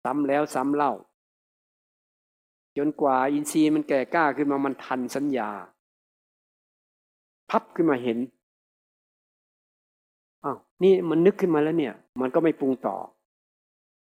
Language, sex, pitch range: Thai, male, 120-155 Hz